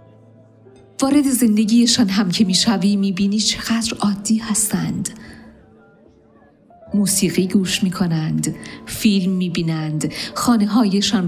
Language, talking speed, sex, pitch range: Persian, 80 wpm, female, 170-210 Hz